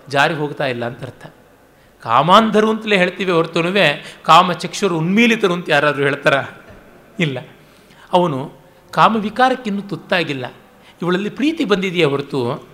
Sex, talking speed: male, 105 wpm